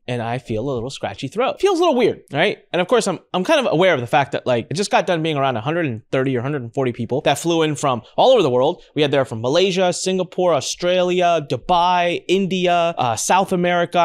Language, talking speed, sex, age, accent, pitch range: English, 235 wpm, male, 20-39, American, 120-175 Hz